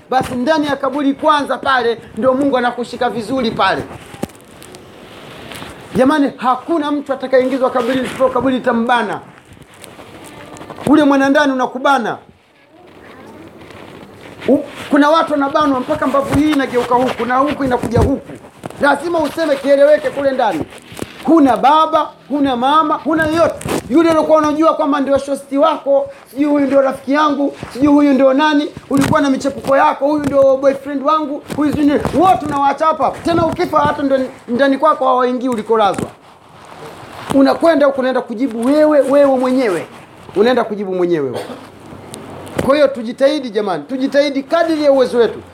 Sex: male